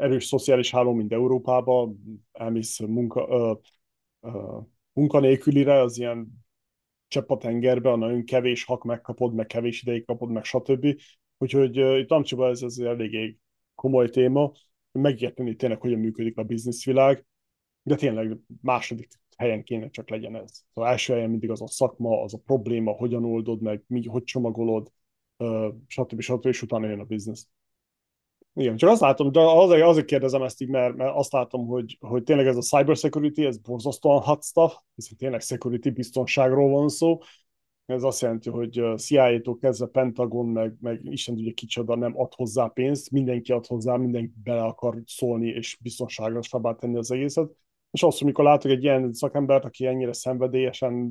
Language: Hungarian